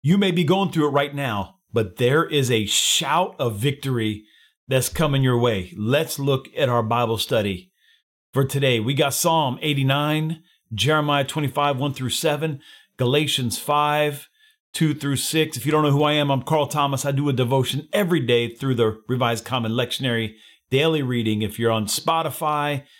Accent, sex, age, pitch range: American, male, 40-59, 125-155 Hz